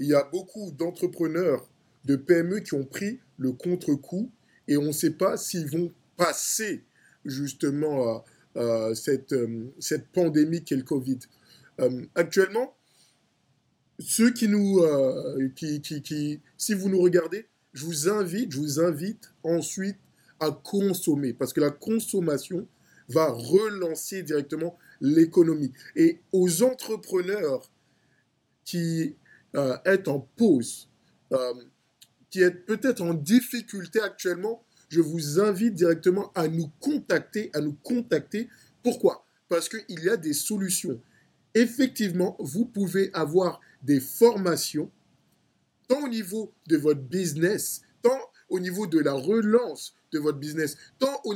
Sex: male